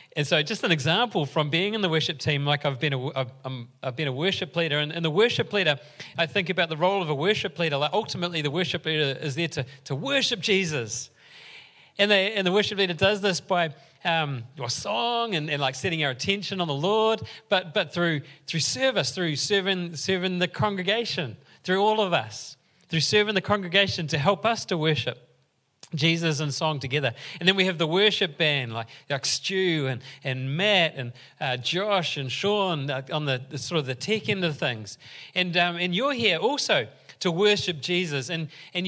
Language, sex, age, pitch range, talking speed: English, male, 30-49, 145-200 Hz, 205 wpm